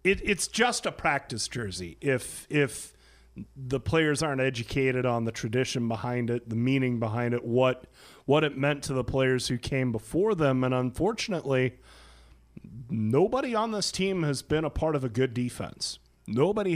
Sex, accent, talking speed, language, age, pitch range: male, American, 165 wpm, English, 30-49, 115-145 Hz